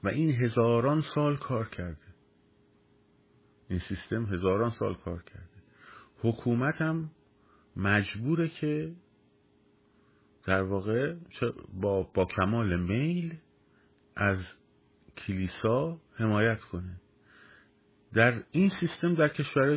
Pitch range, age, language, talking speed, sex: 90-125 Hz, 50-69, Persian, 95 wpm, male